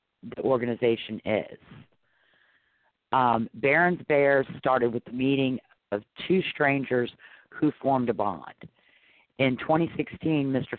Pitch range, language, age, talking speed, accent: 115-140 Hz, English, 50-69, 110 wpm, American